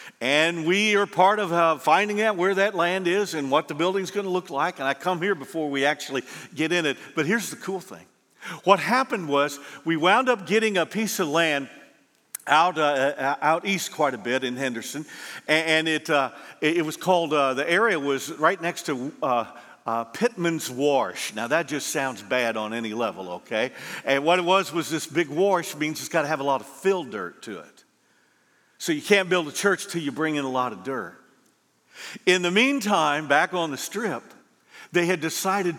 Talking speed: 210 wpm